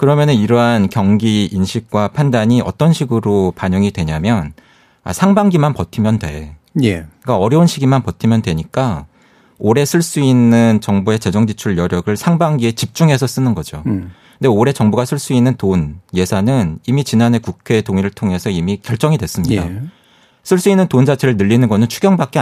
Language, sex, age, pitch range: Korean, male, 40-59, 95-140 Hz